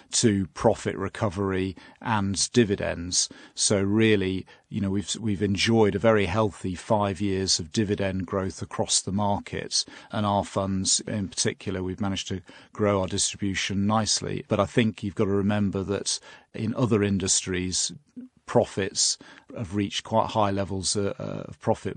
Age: 40-59